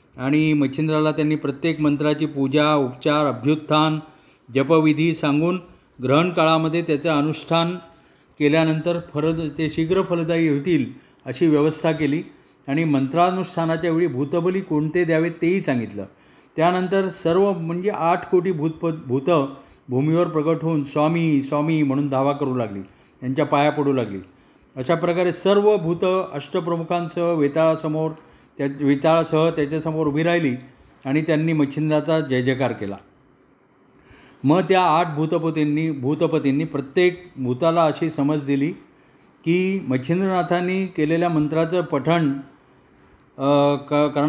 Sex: male